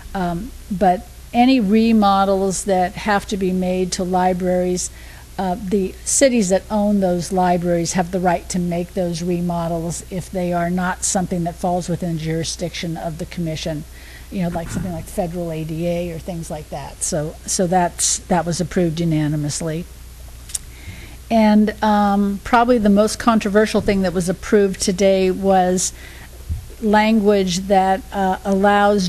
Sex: female